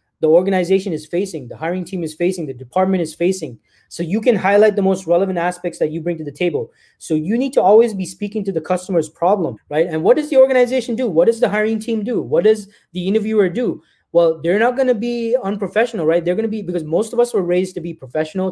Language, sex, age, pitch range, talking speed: English, male, 20-39, 165-220 Hz, 250 wpm